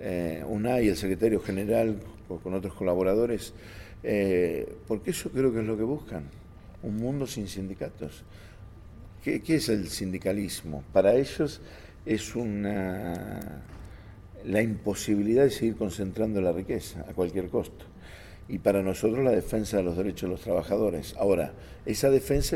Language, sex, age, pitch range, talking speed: English, male, 50-69, 95-115 Hz, 145 wpm